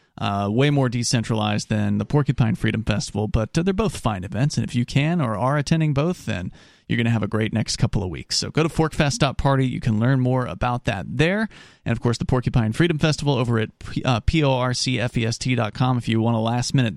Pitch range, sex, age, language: 115-145 Hz, male, 30-49, English